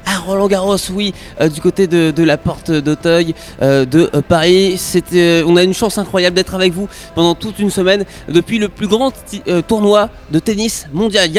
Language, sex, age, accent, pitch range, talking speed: French, male, 20-39, French, 160-205 Hz, 195 wpm